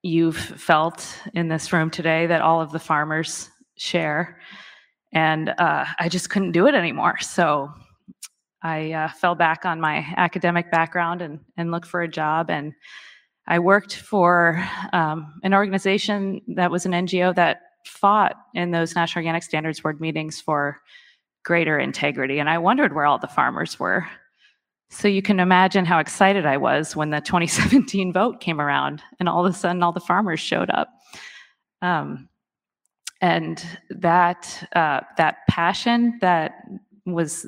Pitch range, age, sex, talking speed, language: 160-190 Hz, 20-39, female, 155 wpm, English